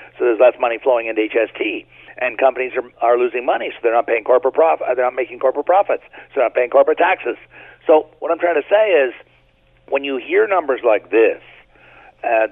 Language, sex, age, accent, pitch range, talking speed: English, male, 50-69, American, 145-185 Hz, 210 wpm